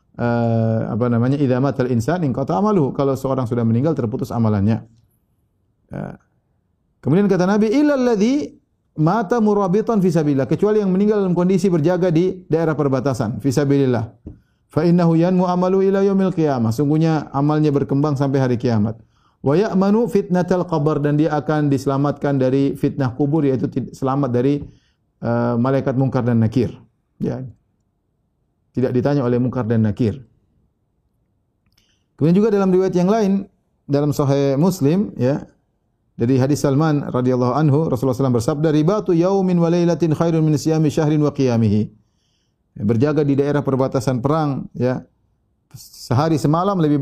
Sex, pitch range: male, 125-175 Hz